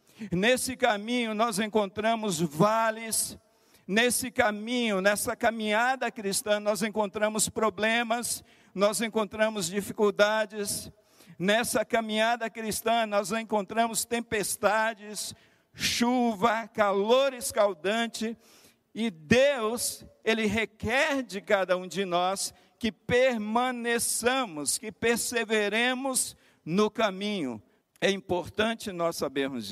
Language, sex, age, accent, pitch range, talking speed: Portuguese, male, 60-79, Brazilian, 190-225 Hz, 90 wpm